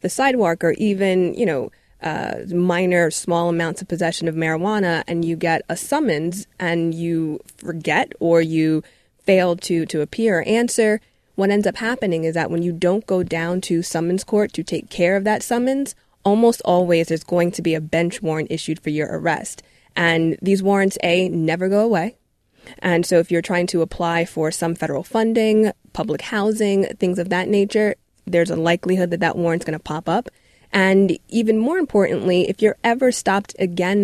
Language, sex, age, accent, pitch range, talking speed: English, female, 20-39, American, 170-205 Hz, 185 wpm